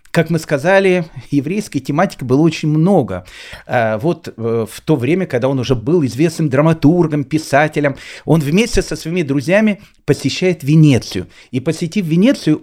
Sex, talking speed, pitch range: male, 140 wpm, 135-180 Hz